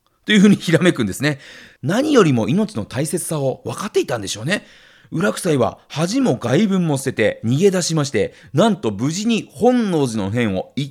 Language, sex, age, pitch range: Japanese, male, 40-59, 110-185 Hz